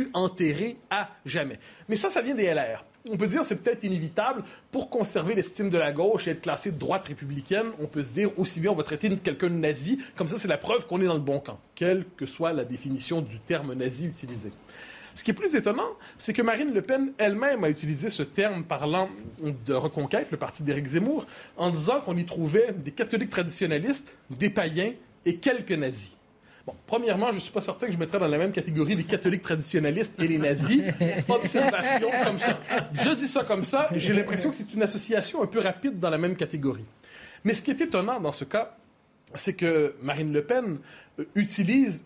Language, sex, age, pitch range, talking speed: French, male, 30-49, 160-235 Hz, 215 wpm